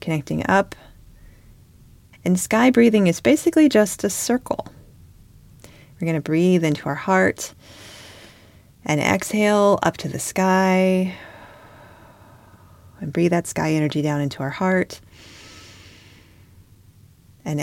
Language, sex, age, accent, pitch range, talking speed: English, female, 30-49, American, 105-170 Hz, 110 wpm